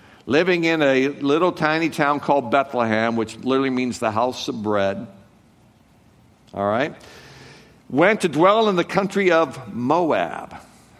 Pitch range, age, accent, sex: 130-165 Hz, 60-79, American, male